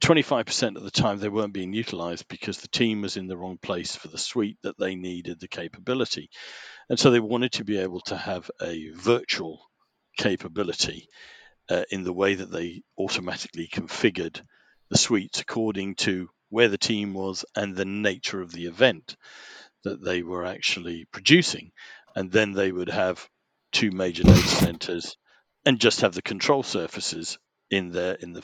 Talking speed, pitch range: 170 wpm, 90-110 Hz